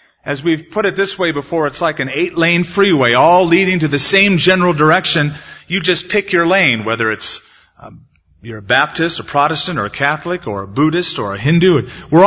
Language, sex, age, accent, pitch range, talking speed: English, male, 40-59, American, 115-180 Hz, 205 wpm